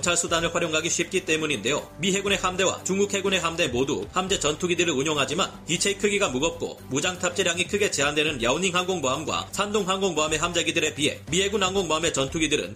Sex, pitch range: male, 155-190 Hz